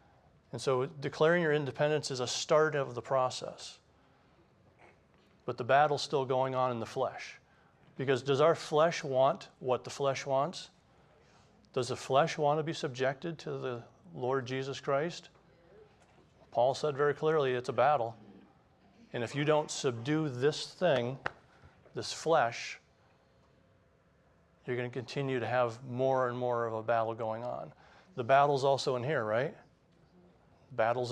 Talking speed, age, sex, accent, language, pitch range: 150 wpm, 40-59, male, American, English, 125-145 Hz